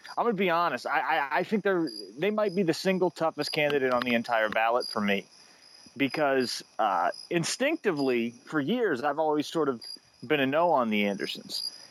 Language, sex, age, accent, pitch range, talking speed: English, male, 30-49, American, 125-175 Hz, 185 wpm